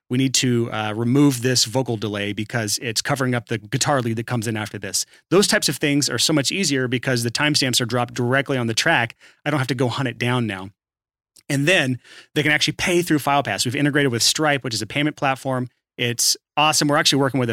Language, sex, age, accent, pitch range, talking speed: English, male, 30-49, American, 120-145 Hz, 235 wpm